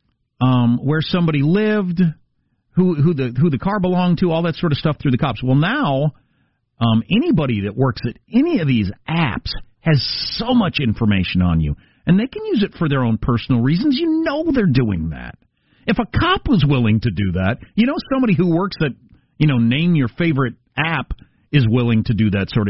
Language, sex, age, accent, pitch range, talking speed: English, male, 40-59, American, 105-150 Hz, 205 wpm